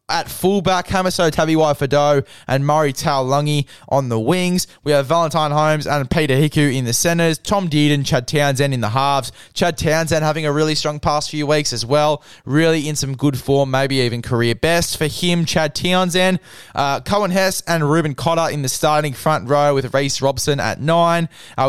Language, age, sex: English, 20-39, male